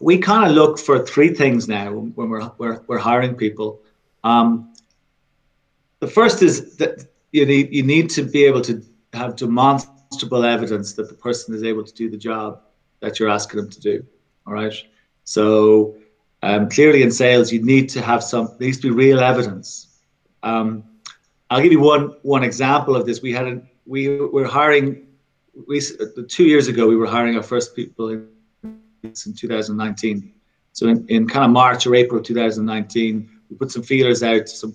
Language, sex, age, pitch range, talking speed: English, male, 40-59, 110-140 Hz, 180 wpm